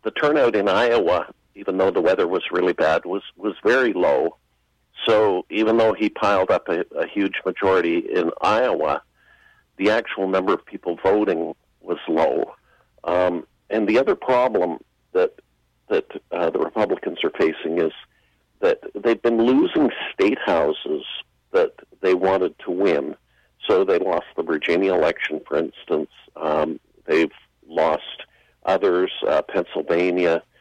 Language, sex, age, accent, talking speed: English, male, 50-69, American, 135 wpm